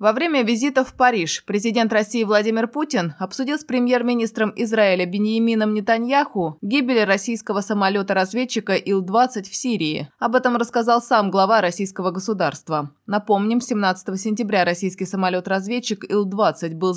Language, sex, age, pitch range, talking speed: Russian, female, 20-39, 180-230 Hz, 125 wpm